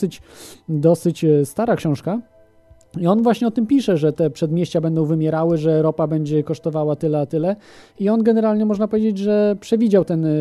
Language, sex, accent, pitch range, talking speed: Polish, male, native, 155-205 Hz, 175 wpm